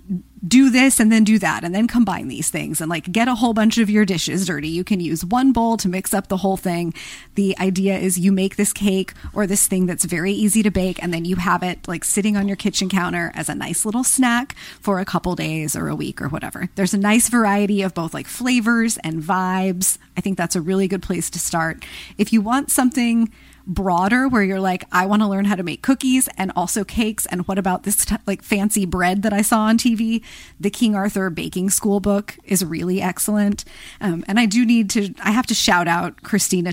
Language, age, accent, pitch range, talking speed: English, 30-49, American, 180-230 Hz, 235 wpm